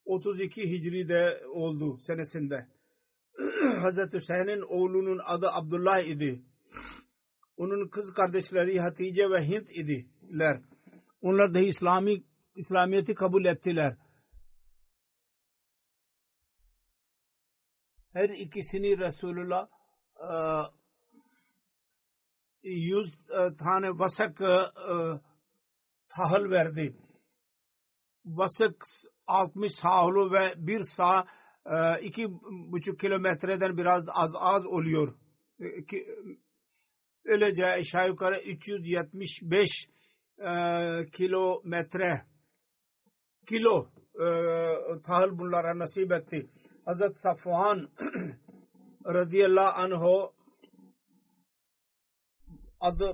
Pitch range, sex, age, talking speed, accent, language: 160-195 Hz, male, 50-69, 70 wpm, Indian, Turkish